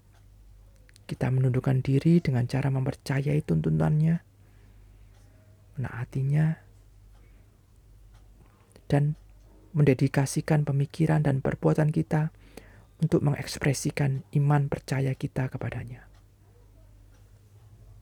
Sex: male